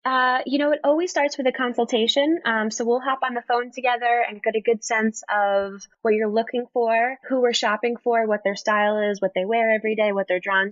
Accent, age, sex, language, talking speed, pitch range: American, 10-29, female, English, 240 wpm, 190-235 Hz